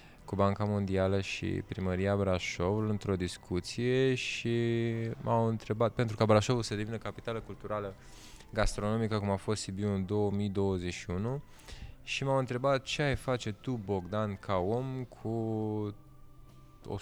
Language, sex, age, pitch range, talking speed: Romanian, male, 20-39, 100-125 Hz, 130 wpm